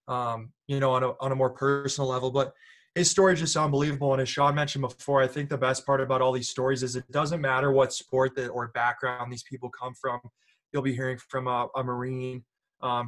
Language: English